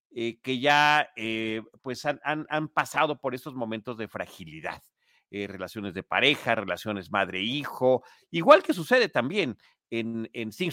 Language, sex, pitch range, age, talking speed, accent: Spanish, male, 110-150 Hz, 50-69, 145 wpm, Mexican